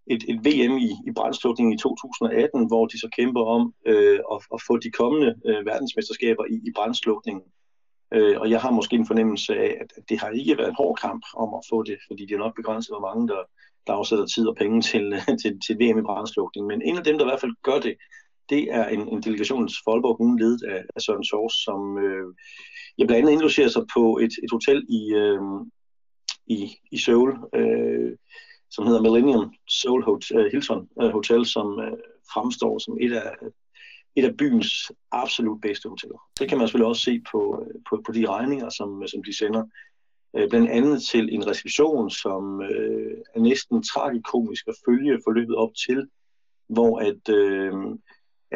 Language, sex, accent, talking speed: Danish, male, native, 190 wpm